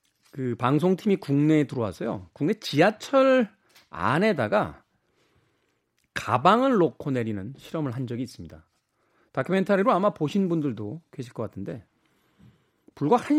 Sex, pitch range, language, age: male, 125-205 Hz, Korean, 40-59